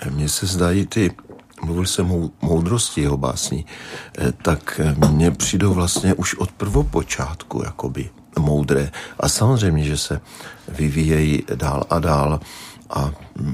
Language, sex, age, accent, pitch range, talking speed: Czech, male, 50-69, native, 80-105 Hz, 120 wpm